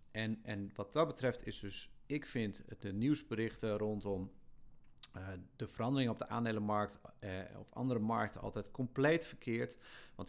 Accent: Dutch